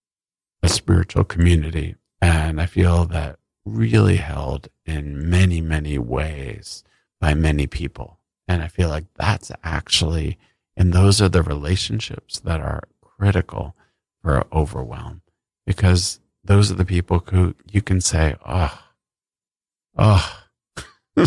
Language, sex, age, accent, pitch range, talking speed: English, male, 50-69, American, 75-95 Hz, 120 wpm